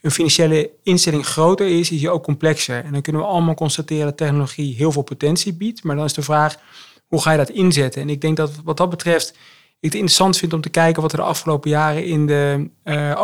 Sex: male